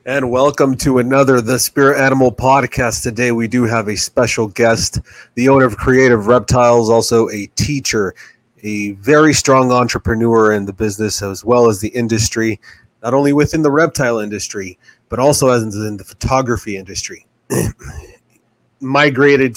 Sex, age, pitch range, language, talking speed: male, 30-49, 105-125 Hz, English, 150 wpm